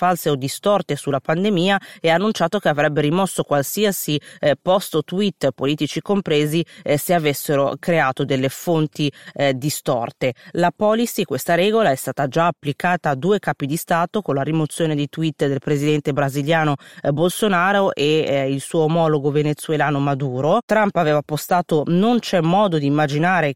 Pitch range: 145-180 Hz